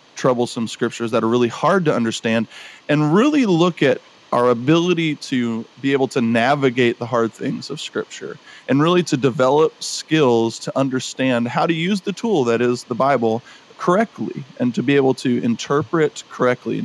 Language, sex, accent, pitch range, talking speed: English, male, American, 120-155 Hz, 170 wpm